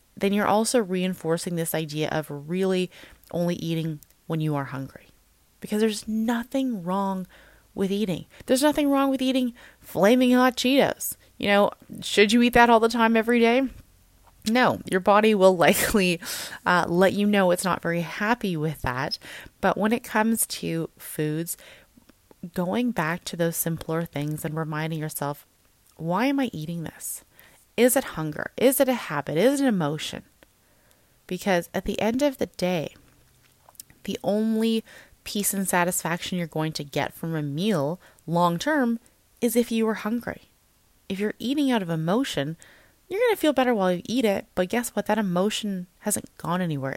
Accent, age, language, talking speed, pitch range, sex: American, 30-49, English, 170 wpm, 165-230 Hz, female